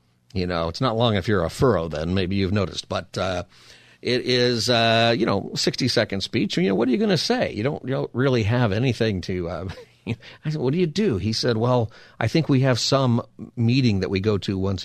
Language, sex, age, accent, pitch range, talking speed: English, male, 50-69, American, 100-130 Hz, 245 wpm